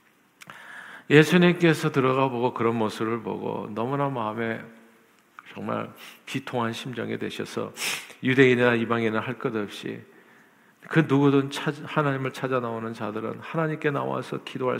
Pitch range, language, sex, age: 110-140 Hz, Korean, male, 50-69